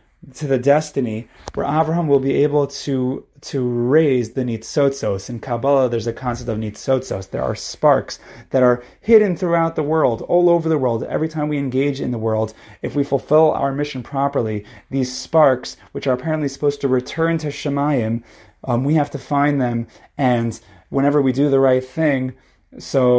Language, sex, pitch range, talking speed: English, male, 120-145 Hz, 180 wpm